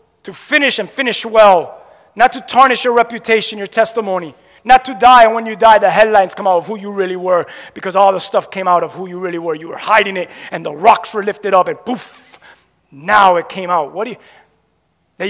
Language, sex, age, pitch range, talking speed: English, male, 30-49, 185-230 Hz, 230 wpm